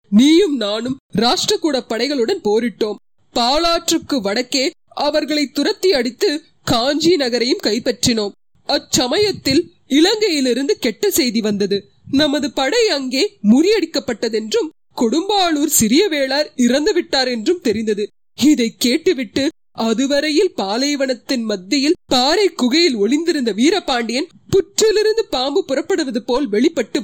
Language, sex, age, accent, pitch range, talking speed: Tamil, female, 30-49, native, 230-305 Hz, 95 wpm